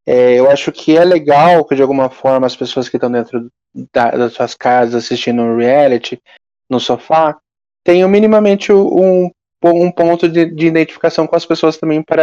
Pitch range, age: 130-170 Hz, 20-39